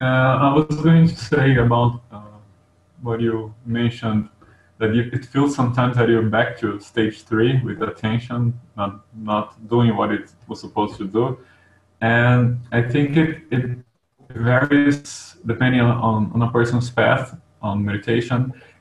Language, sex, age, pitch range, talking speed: English, male, 20-39, 115-145 Hz, 150 wpm